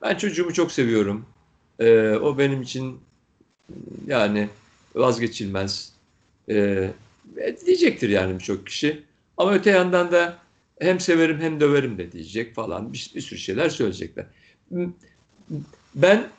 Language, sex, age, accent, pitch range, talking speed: Turkish, male, 60-79, native, 110-180 Hz, 115 wpm